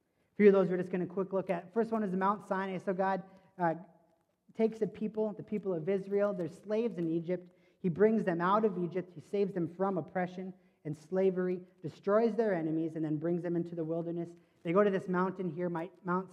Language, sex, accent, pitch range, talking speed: English, male, American, 160-190 Hz, 220 wpm